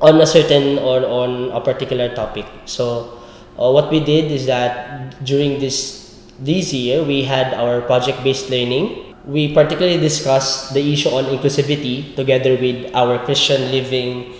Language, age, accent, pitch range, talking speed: English, 20-39, Filipino, 125-145 Hz, 150 wpm